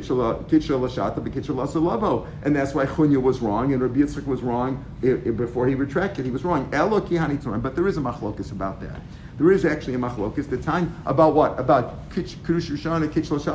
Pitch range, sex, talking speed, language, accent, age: 130-165 Hz, male, 170 wpm, English, American, 50-69